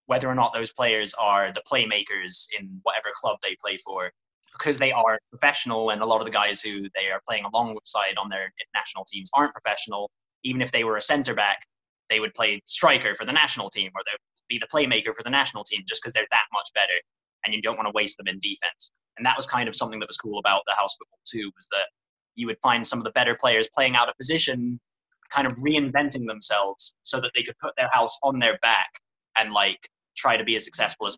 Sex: male